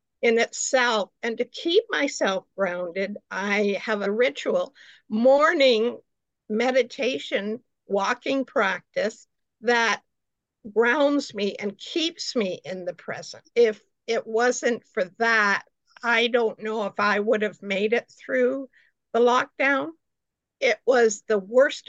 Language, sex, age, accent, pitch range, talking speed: English, female, 50-69, American, 210-260 Hz, 125 wpm